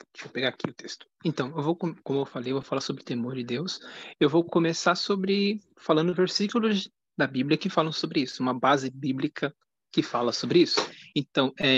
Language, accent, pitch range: Portuguese, Brazilian, 150-195 Hz